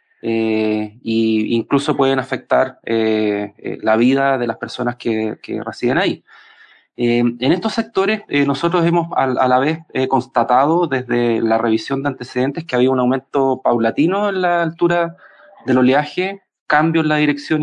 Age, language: 30-49, Spanish